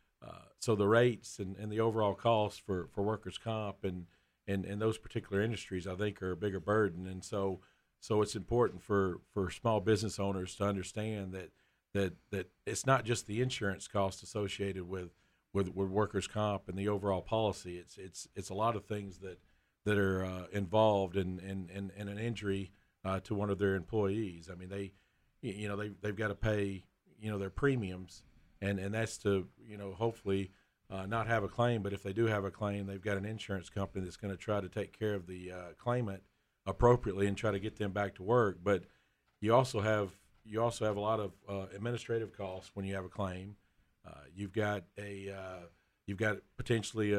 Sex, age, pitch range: male, 50-69, 95-110 Hz